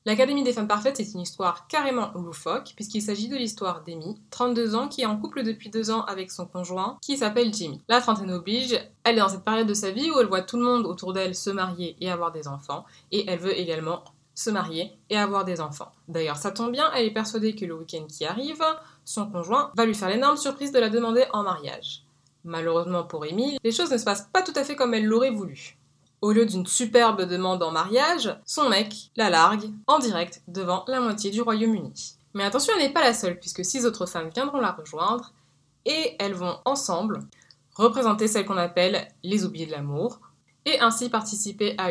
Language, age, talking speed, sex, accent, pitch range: French, 20-39, 220 wpm, female, French, 175-230 Hz